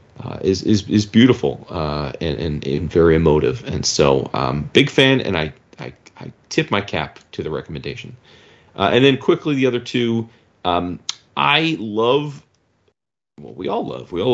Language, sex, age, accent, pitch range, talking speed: English, male, 40-59, American, 85-115 Hz, 180 wpm